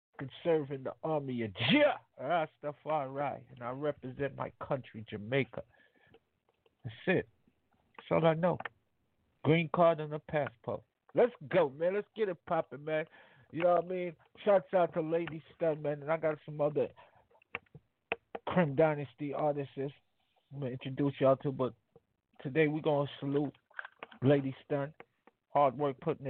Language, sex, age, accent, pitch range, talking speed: English, male, 50-69, American, 135-160 Hz, 160 wpm